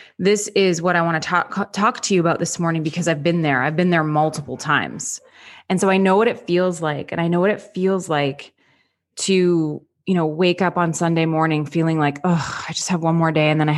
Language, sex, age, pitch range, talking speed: English, female, 20-39, 155-185 Hz, 250 wpm